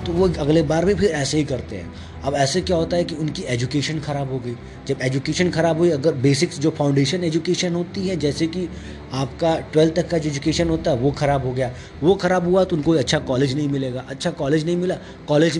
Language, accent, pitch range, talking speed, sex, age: Hindi, native, 130-170 Hz, 230 wpm, male, 20-39